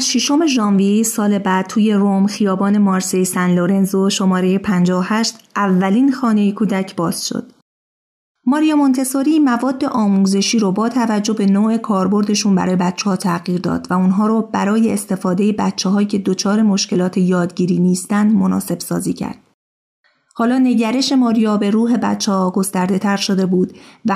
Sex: female